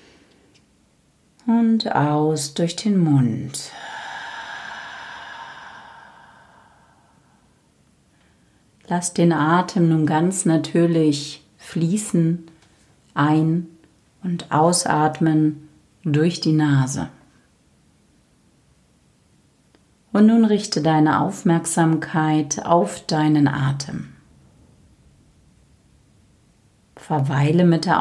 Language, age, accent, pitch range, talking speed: German, 40-59, German, 150-175 Hz, 60 wpm